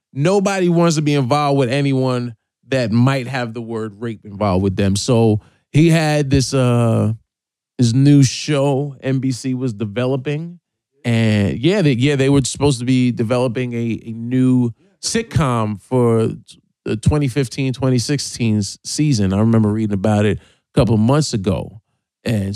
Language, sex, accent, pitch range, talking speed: English, male, American, 110-140 Hz, 150 wpm